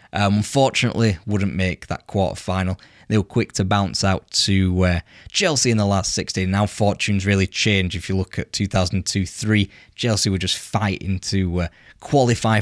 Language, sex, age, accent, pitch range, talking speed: English, male, 10-29, British, 95-110 Hz, 160 wpm